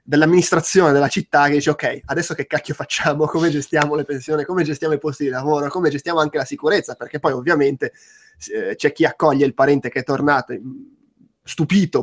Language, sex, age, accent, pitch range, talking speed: Italian, male, 20-39, native, 145-175 Hz, 185 wpm